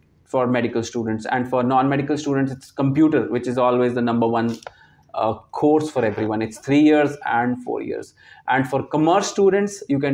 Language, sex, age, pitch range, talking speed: Punjabi, male, 30-49, 120-140 Hz, 190 wpm